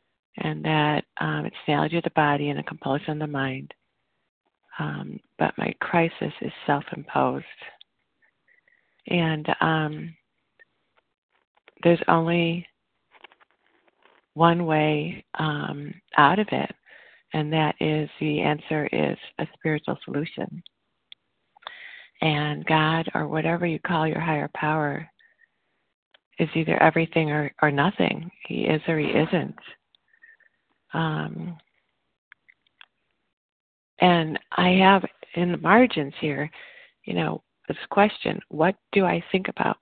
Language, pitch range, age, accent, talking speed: English, 155-180 Hz, 40-59, American, 115 wpm